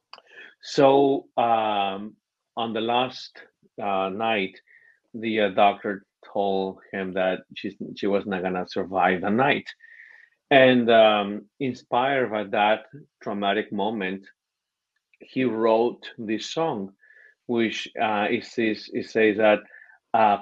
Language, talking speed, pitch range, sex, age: English, 120 wpm, 100-120 Hz, male, 40-59